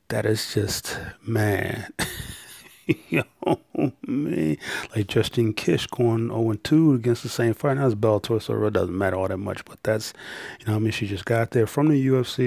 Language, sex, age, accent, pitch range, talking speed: English, male, 30-49, American, 105-120 Hz, 190 wpm